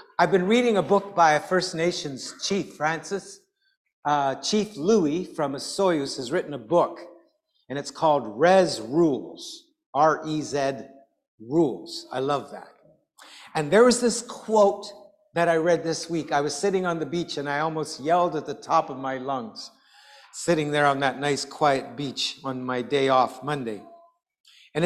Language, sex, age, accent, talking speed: English, male, 60-79, American, 170 wpm